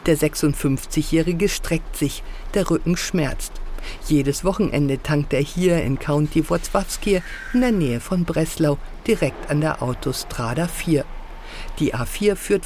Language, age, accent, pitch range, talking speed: German, 50-69, German, 145-185 Hz, 135 wpm